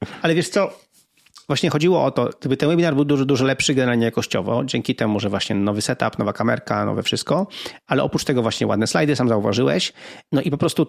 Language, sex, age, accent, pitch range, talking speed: Polish, male, 30-49, native, 120-145 Hz, 210 wpm